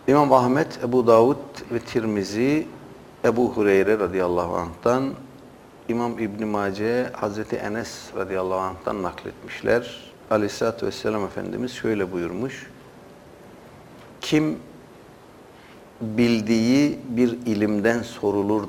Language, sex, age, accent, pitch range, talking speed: Turkish, male, 60-79, native, 95-120 Hz, 90 wpm